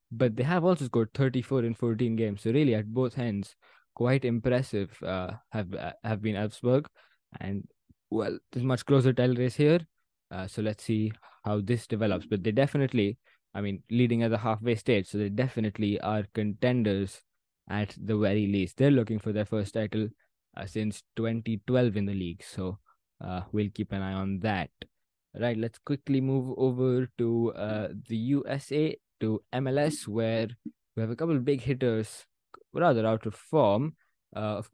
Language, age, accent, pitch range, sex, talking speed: English, 20-39, Indian, 105-130 Hz, male, 175 wpm